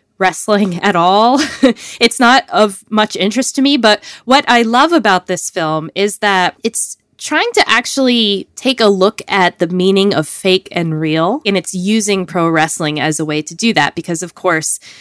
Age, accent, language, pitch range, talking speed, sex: 20-39, American, English, 170-220 Hz, 190 wpm, female